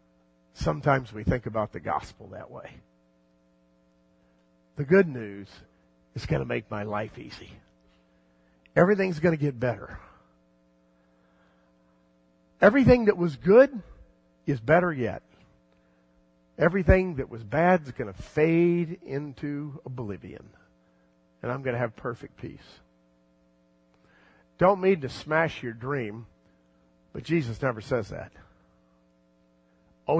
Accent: American